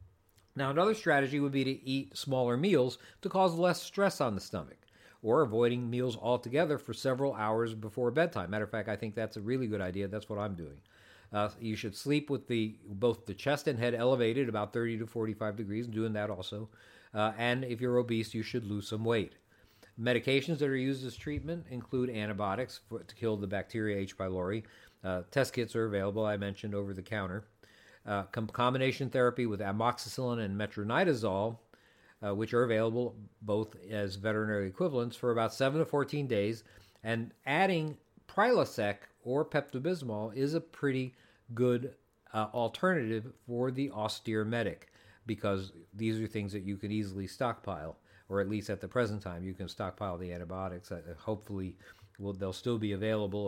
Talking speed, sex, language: 175 wpm, male, English